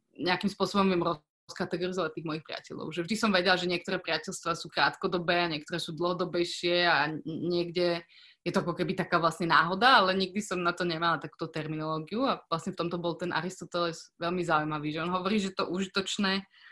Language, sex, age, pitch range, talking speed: Slovak, female, 20-39, 165-195 Hz, 185 wpm